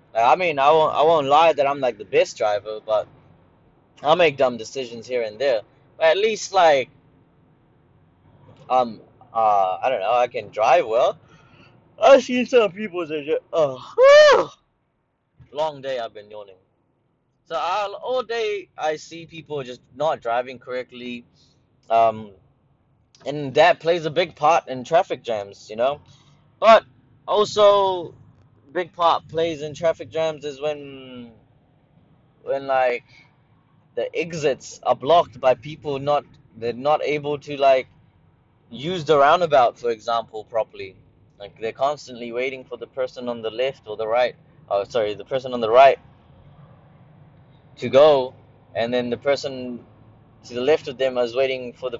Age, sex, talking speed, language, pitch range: 10-29, male, 155 wpm, English, 125-155 Hz